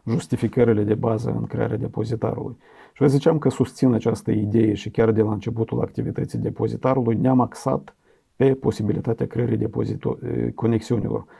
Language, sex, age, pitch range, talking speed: Romanian, male, 40-59, 110-125 Hz, 135 wpm